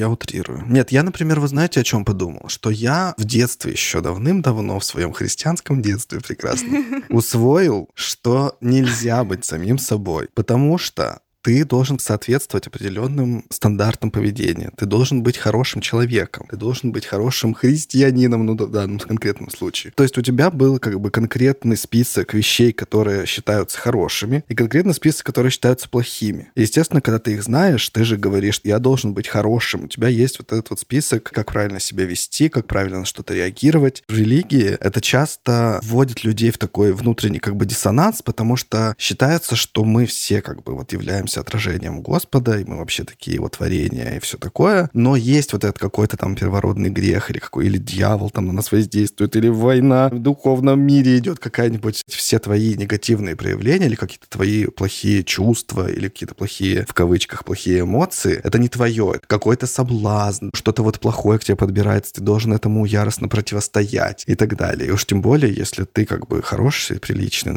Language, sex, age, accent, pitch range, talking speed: Russian, male, 20-39, native, 105-130 Hz, 180 wpm